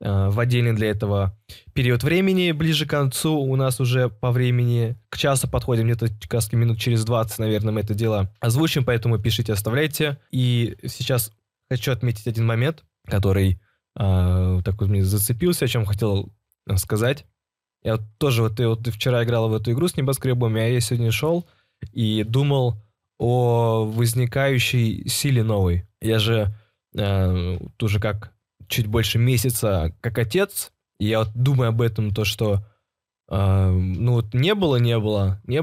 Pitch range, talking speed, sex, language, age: 105-125 Hz, 165 wpm, male, Russian, 20-39